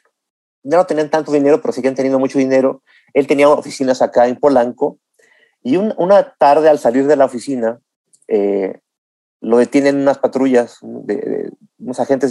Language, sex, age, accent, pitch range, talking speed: Spanish, male, 40-59, Mexican, 120-160 Hz, 160 wpm